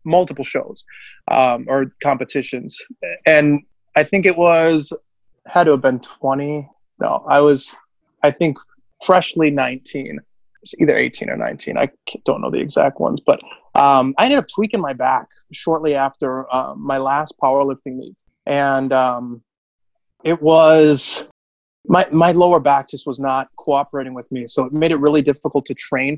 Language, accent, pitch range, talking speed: English, American, 135-155 Hz, 160 wpm